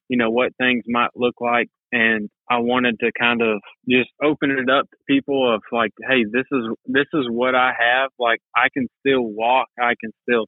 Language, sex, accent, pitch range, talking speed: English, male, American, 115-135 Hz, 210 wpm